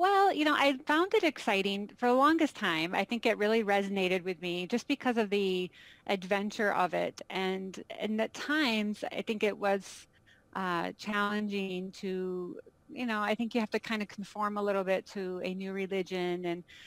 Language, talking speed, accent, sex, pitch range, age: English, 190 wpm, American, female, 185-220 Hz, 30-49